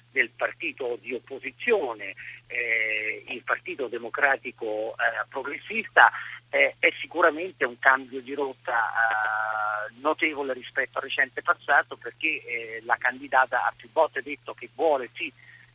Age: 50-69